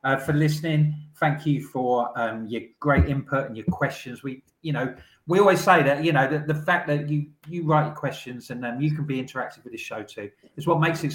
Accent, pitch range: British, 115-150 Hz